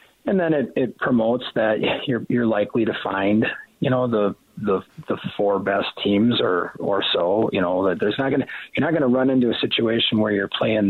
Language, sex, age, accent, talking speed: English, male, 30-49, American, 210 wpm